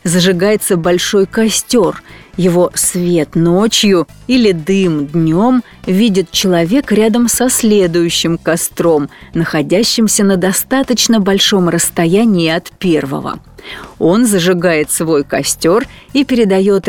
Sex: female